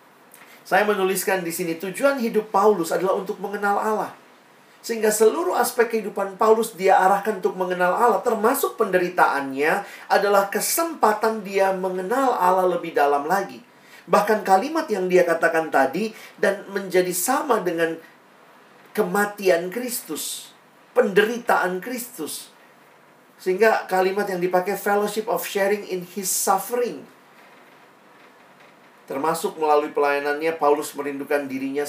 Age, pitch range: 40-59, 155-215 Hz